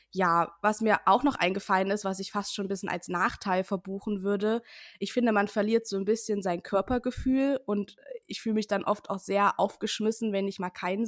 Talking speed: 210 wpm